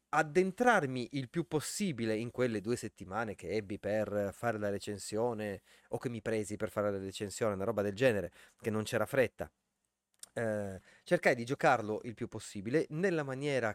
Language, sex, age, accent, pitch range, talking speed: Italian, male, 30-49, native, 105-160 Hz, 170 wpm